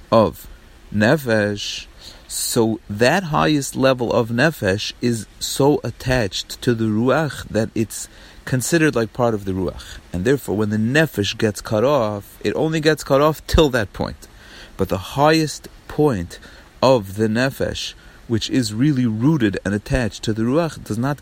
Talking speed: 160 wpm